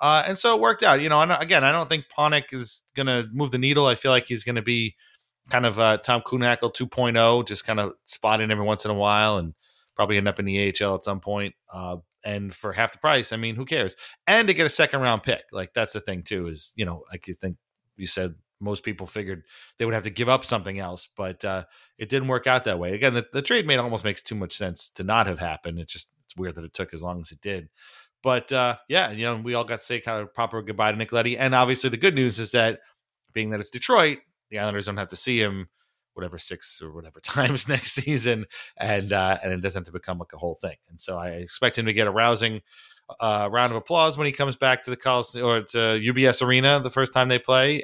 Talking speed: 265 wpm